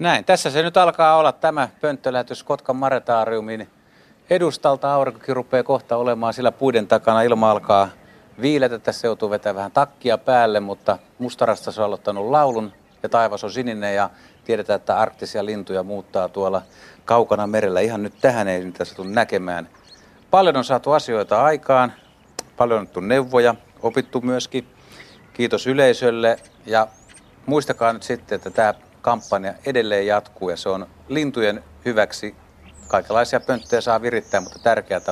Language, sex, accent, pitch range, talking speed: Finnish, male, native, 100-130 Hz, 145 wpm